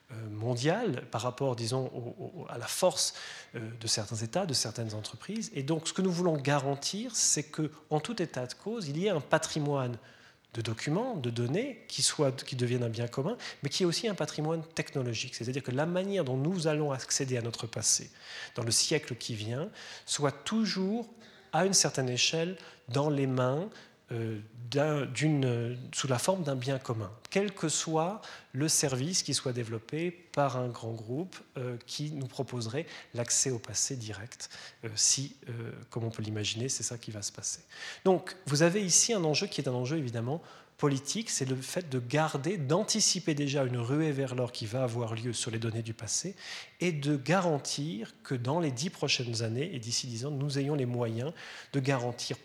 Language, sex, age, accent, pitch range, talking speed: French, male, 30-49, French, 120-160 Hz, 190 wpm